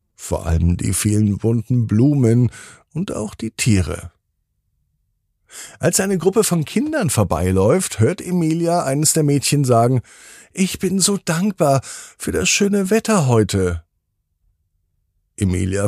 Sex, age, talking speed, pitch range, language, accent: male, 50-69, 120 wpm, 95-155 Hz, German, German